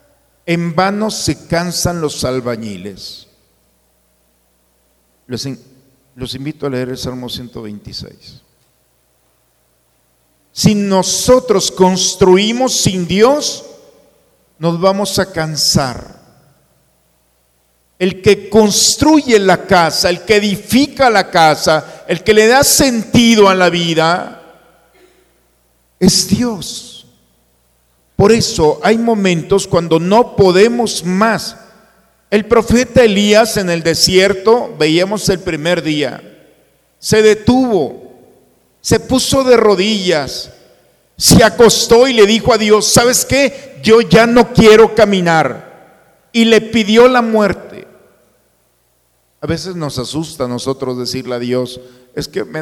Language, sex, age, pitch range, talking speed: Spanish, male, 50-69, 135-220 Hz, 110 wpm